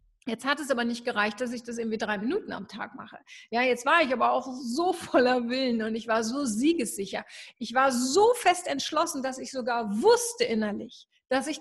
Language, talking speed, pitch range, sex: German, 210 wpm, 230-300 Hz, female